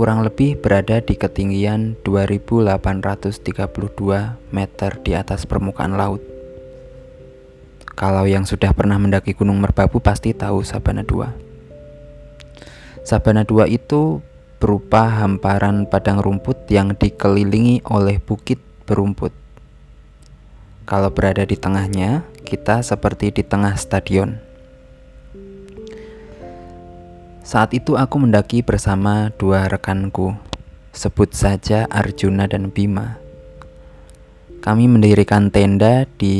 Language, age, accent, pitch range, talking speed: Indonesian, 20-39, native, 95-110 Hz, 95 wpm